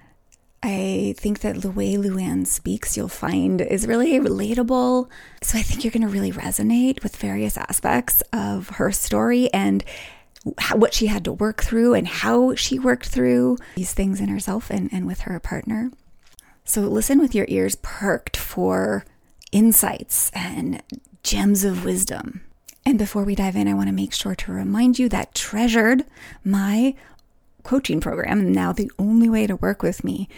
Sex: female